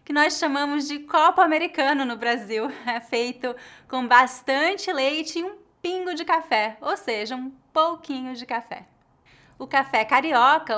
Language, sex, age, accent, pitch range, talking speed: English, female, 20-39, Brazilian, 225-290 Hz, 150 wpm